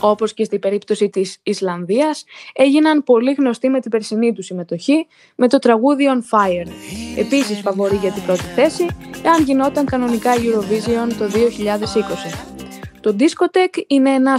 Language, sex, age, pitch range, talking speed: Greek, female, 20-39, 200-260 Hz, 145 wpm